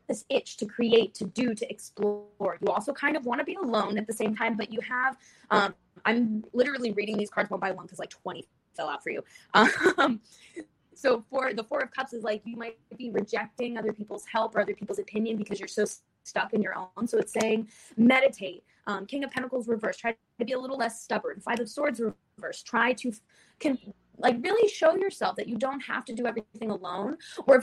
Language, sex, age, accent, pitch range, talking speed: English, female, 20-39, American, 210-255 Hz, 225 wpm